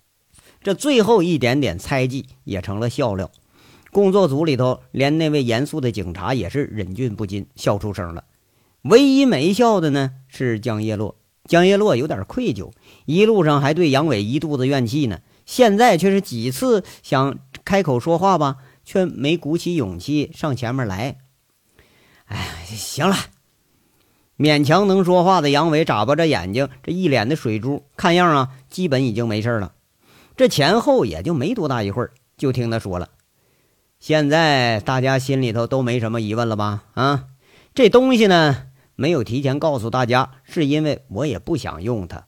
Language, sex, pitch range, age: Chinese, male, 115-165 Hz, 50-69